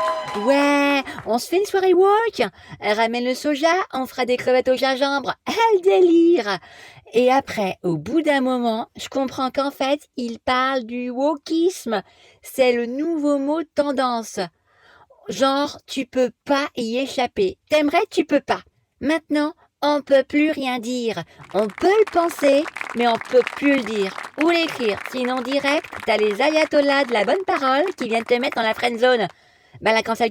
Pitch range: 245-330 Hz